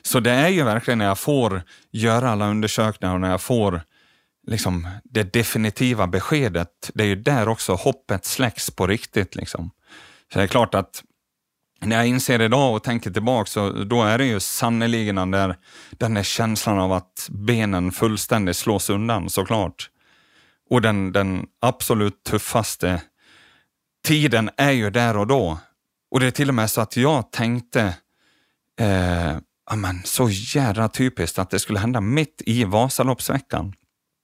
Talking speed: 160 wpm